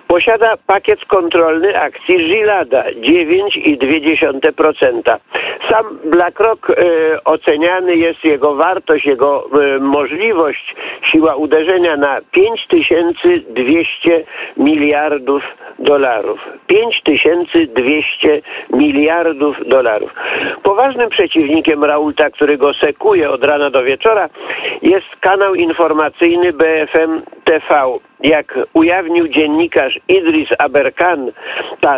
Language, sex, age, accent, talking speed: Polish, male, 50-69, native, 85 wpm